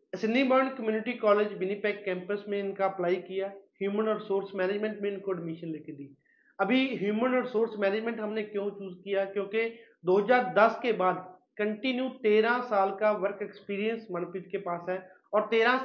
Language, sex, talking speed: Punjabi, male, 160 wpm